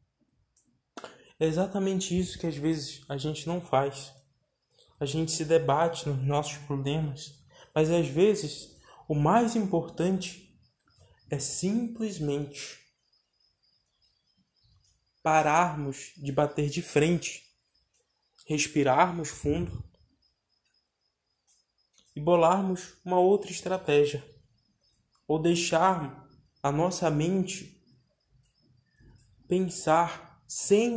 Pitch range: 130-165 Hz